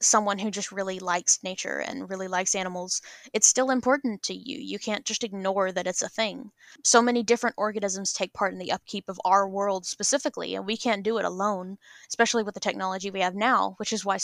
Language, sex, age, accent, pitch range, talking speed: English, female, 10-29, American, 190-220 Hz, 220 wpm